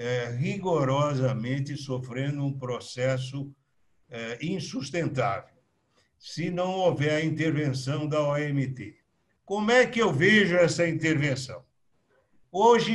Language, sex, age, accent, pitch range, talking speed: Portuguese, male, 60-79, Brazilian, 125-155 Hz, 100 wpm